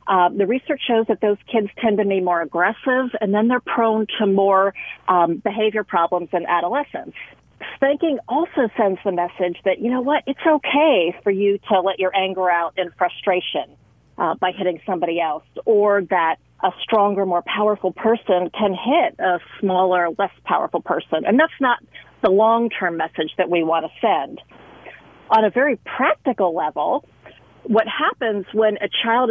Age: 40-59